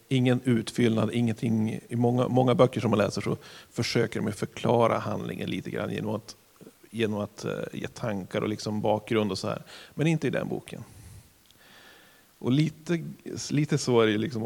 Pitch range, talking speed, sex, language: 110-130 Hz, 170 wpm, male, Swedish